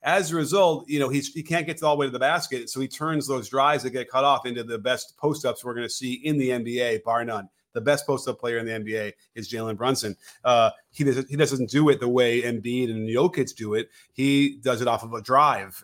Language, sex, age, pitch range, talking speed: English, male, 30-49, 115-140 Hz, 260 wpm